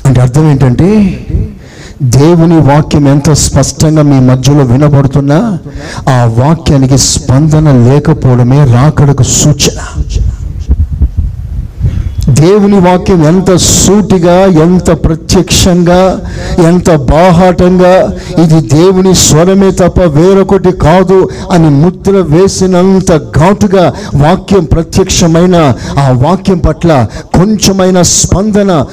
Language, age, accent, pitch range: Telugu, 60-79, native, 120-200 Hz